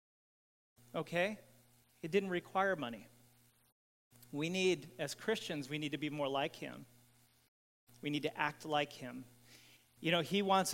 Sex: male